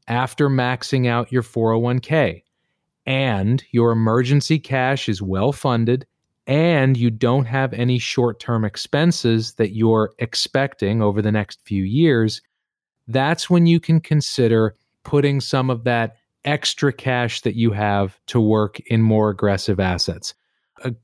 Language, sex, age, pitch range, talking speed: English, male, 30-49, 110-140 Hz, 135 wpm